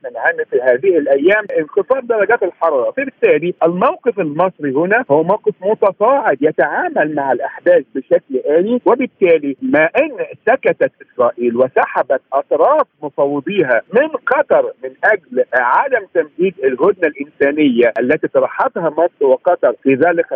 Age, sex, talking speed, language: 50-69, male, 120 wpm, Arabic